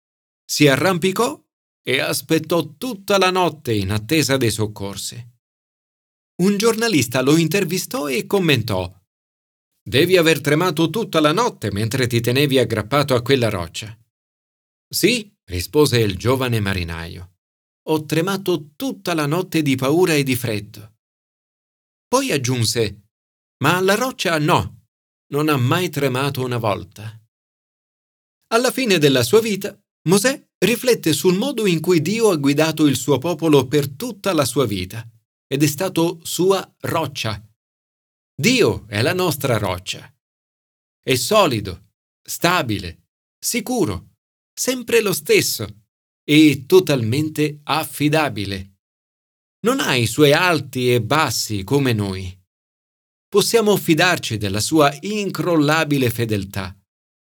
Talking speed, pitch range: 120 wpm, 105-175 Hz